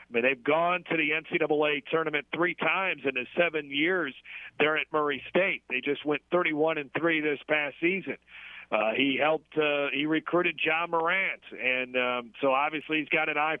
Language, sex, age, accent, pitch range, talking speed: English, male, 40-59, American, 140-165 Hz, 195 wpm